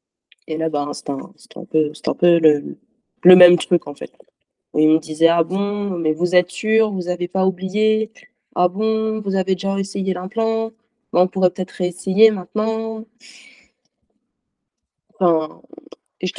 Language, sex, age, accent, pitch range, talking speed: French, female, 20-39, French, 170-205 Hz, 165 wpm